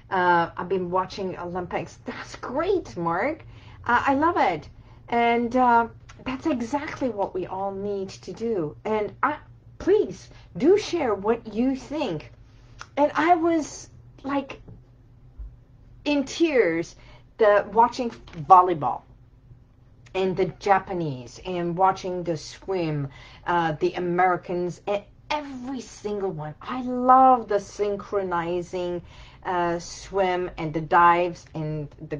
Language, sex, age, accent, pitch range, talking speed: English, female, 50-69, American, 140-235 Hz, 120 wpm